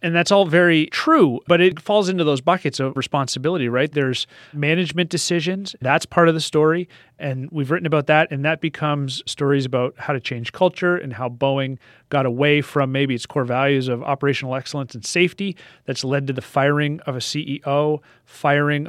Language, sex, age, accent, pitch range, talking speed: English, male, 30-49, American, 135-155 Hz, 190 wpm